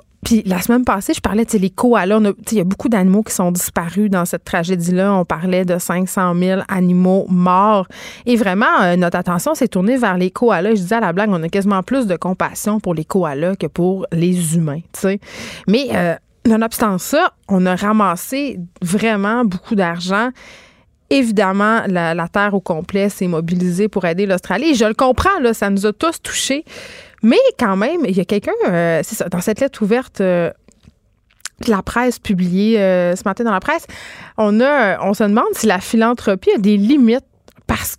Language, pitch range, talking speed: French, 185-230 Hz, 190 wpm